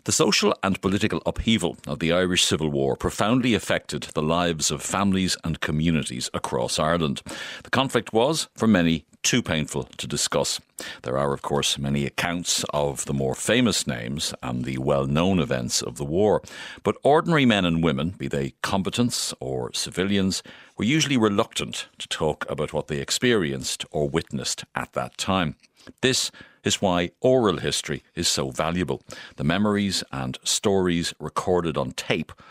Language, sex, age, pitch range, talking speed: English, male, 60-79, 70-95 Hz, 160 wpm